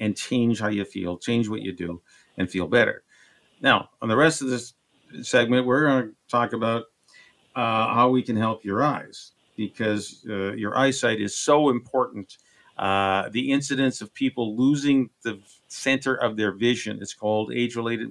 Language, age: English, 50-69